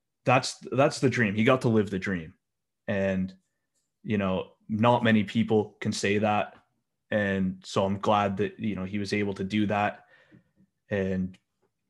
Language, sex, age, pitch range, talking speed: English, male, 20-39, 95-110 Hz, 165 wpm